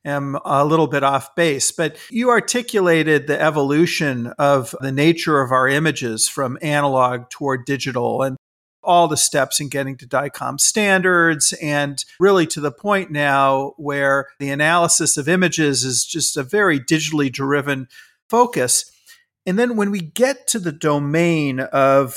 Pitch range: 135-170 Hz